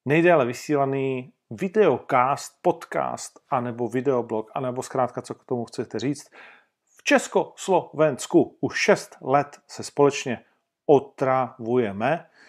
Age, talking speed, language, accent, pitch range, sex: 40-59, 100 wpm, Czech, native, 125-160 Hz, male